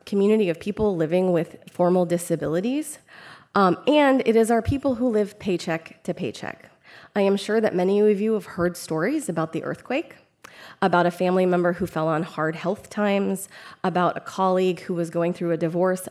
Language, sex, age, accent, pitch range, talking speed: English, female, 20-39, American, 170-215 Hz, 185 wpm